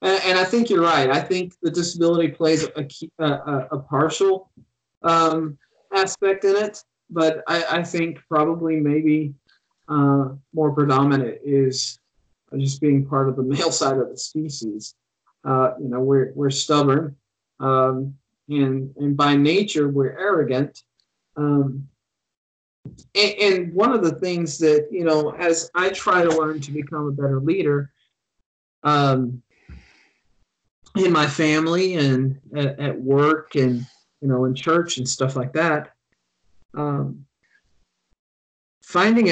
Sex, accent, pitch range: male, American, 135-170 Hz